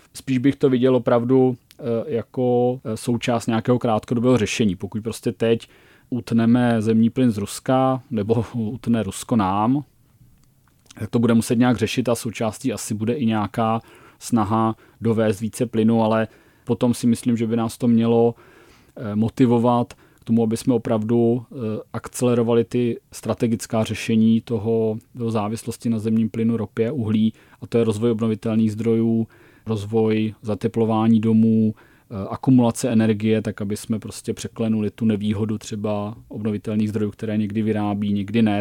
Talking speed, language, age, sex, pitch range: 140 wpm, Czech, 30-49, male, 110-120 Hz